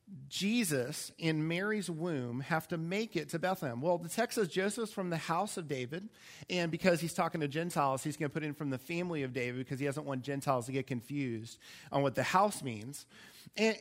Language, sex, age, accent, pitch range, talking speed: English, male, 40-59, American, 140-195 Hz, 215 wpm